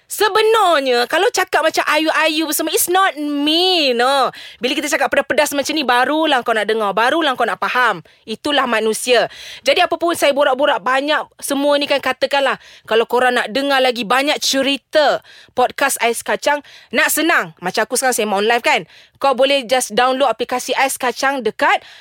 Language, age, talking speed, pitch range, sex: Malay, 20-39, 170 wpm, 235-300 Hz, female